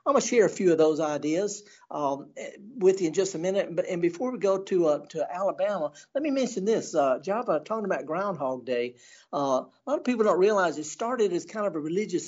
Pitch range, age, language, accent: 155-195 Hz, 60-79, English, American